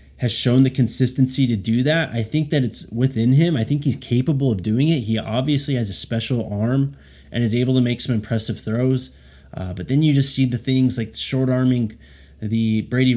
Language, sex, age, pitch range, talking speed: English, male, 20-39, 105-125 Hz, 215 wpm